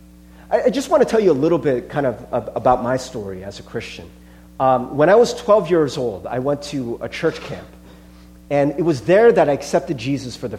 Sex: male